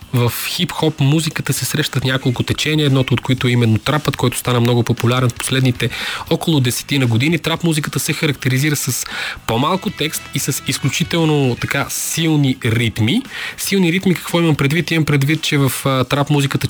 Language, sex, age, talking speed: Bulgarian, male, 20-39, 165 wpm